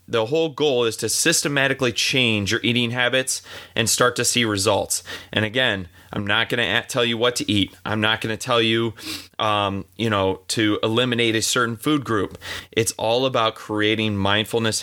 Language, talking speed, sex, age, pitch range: English, 180 wpm, male, 30-49, 100-125 Hz